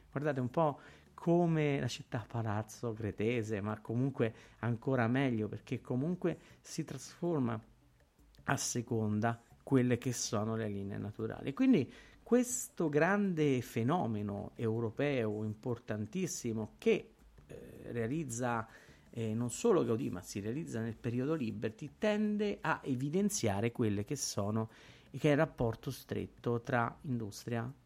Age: 50-69